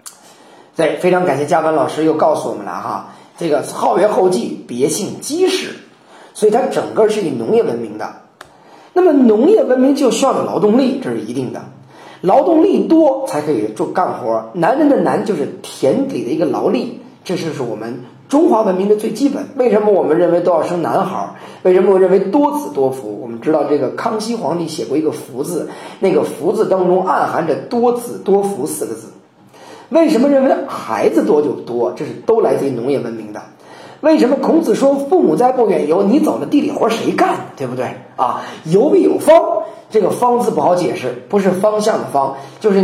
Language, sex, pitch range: Chinese, male, 180-285 Hz